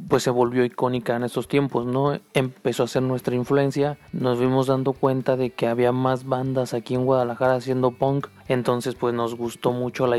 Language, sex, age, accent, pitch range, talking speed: Spanish, male, 30-49, Mexican, 120-135 Hz, 195 wpm